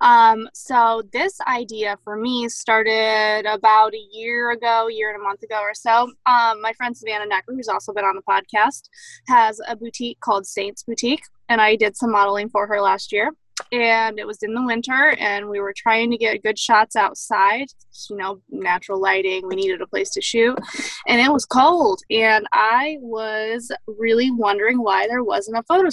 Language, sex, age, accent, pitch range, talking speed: English, female, 20-39, American, 210-255 Hz, 195 wpm